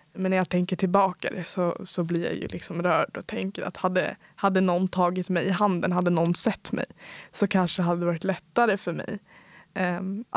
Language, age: Swedish, 20-39